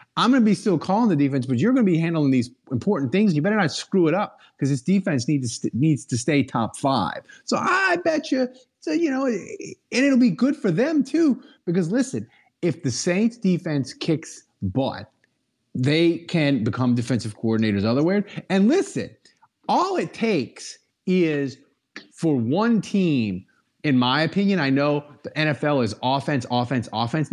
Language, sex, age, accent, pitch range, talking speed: English, male, 30-49, American, 145-230 Hz, 180 wpm